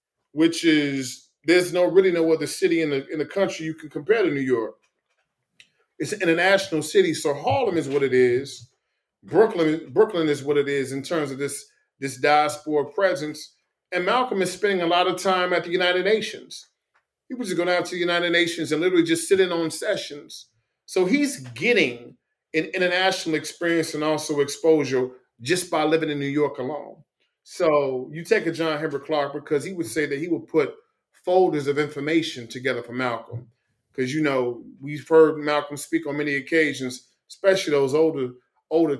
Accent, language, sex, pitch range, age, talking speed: American, English, male, 135-175 Hz, 40-59, 185 wpm